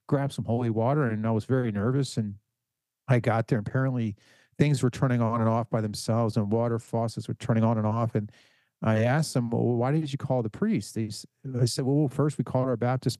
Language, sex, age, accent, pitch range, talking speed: English, male, 40-59, American, 115-145 Hz, 225 wpm